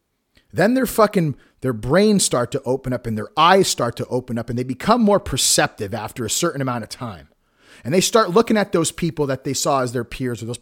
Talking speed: 235 wpm